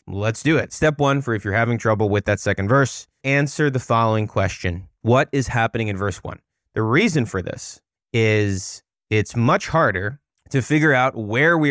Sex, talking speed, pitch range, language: male, 190 wpm, 100-130 Hz, English